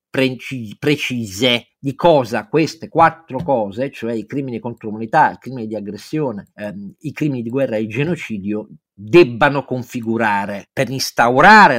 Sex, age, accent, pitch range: male, 50-69, native, 120-185 Hz